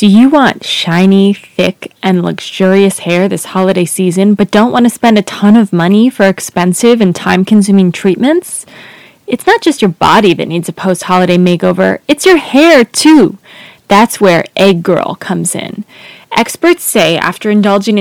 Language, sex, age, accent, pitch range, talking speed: English, female, 20-39, American, 190-235 Hz, 165 wpm